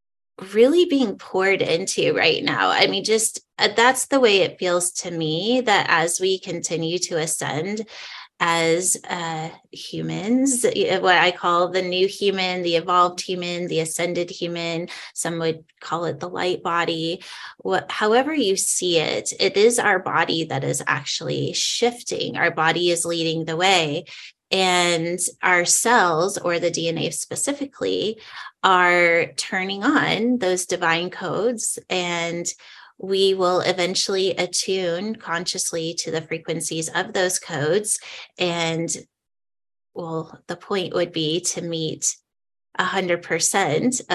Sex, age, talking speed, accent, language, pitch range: female, 20-39, 130 wpm, American, English, 165-195 Hz